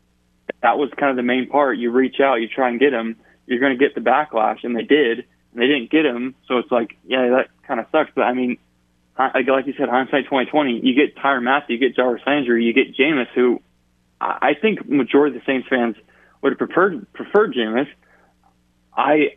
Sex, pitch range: male, 115-130 Hz